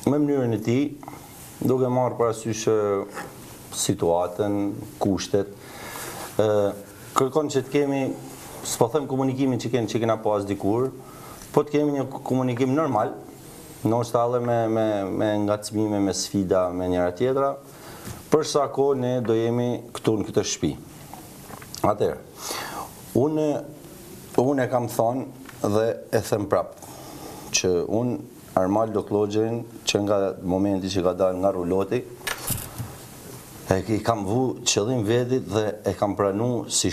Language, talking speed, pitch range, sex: English, 95 wpm, 100-130 Hz, male